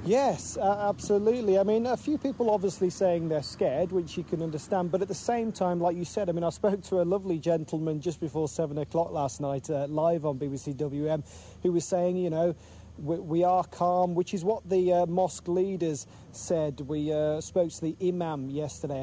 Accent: British